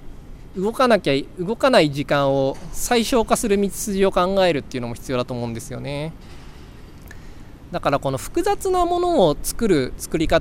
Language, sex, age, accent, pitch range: Japanese, male, 20-39, native, 130-215 Hz